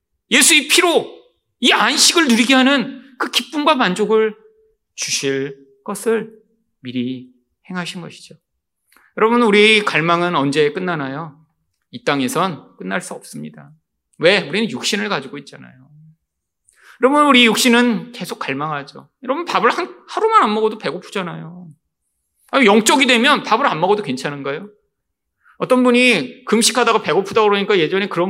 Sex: male